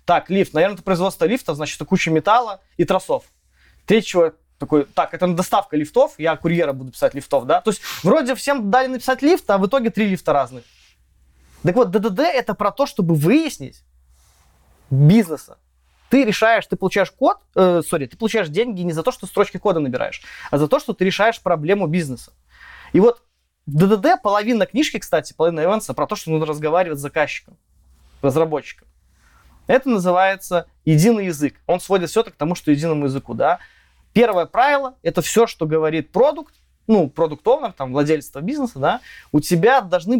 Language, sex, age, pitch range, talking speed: Russian, male, 20-39, 150-225 Hz, 180 wpm